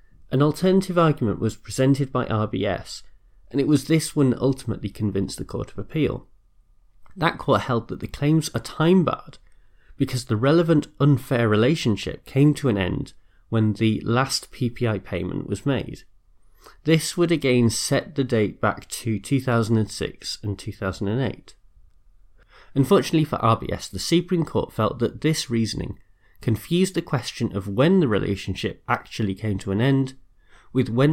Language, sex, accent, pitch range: English, male, British, 105-140 Hz